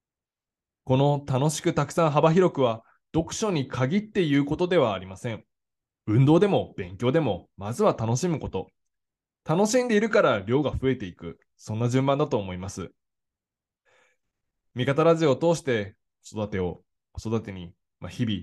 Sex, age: male, 20-39